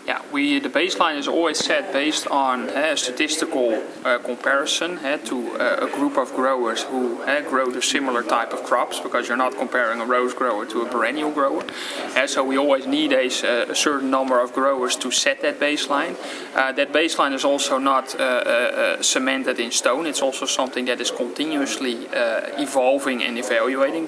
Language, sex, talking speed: English, male, 190 wpm